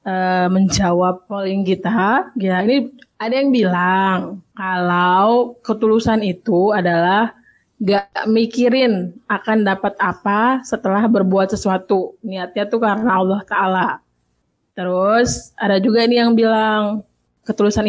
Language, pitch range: Indonesian, 185-220 Hz